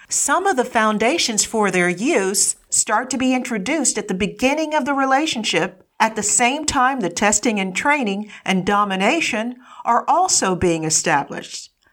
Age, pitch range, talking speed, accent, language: 50-69, 200-280 Hz, 155 wpm, American, English